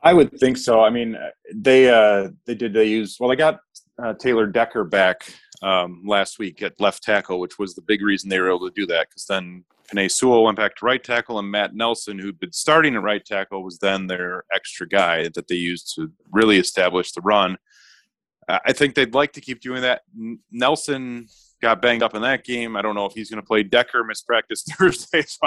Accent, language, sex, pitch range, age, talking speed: American, English, male, 95-120 Hz, 30-49, 230 wpm